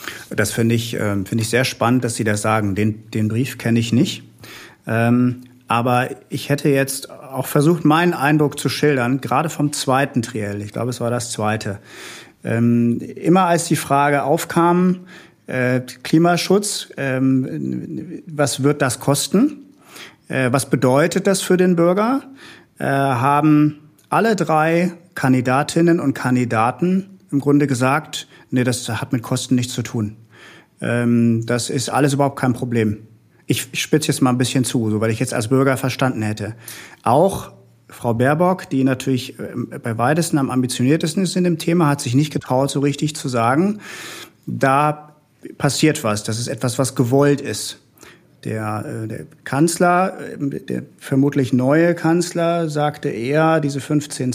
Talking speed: 145 wpm